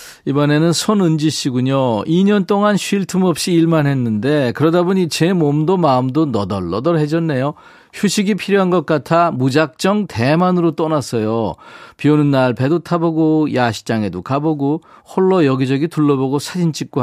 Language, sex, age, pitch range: Korean, male, 40-59, 120-170 Hz